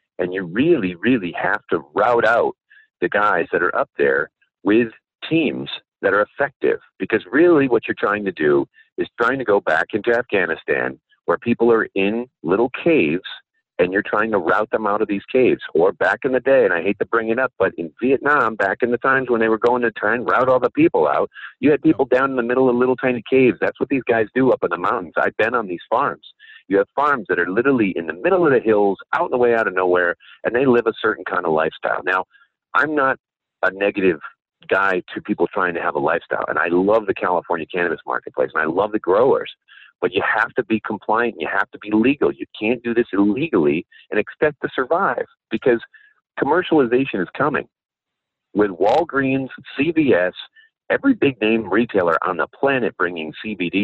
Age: 50-69